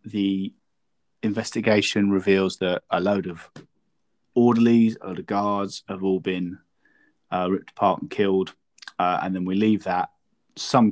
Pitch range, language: 95-115 Hz, English